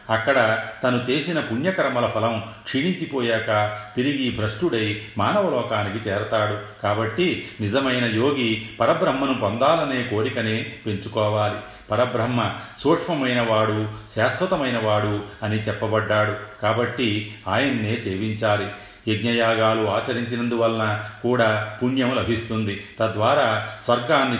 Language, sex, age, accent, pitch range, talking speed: Telugu, male, 40-59, native, 105-125 Hz, 80 wpm